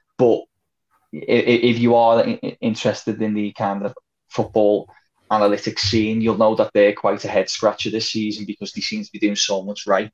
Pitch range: 105-135 Hz